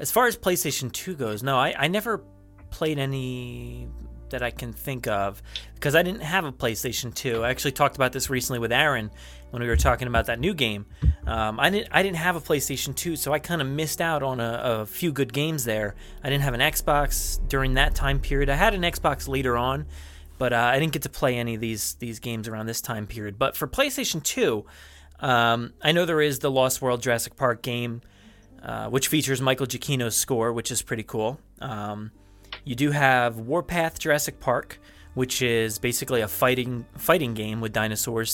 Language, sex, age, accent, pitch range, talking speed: English, male, 30-49, American, 110-145 Hz, 210 wpm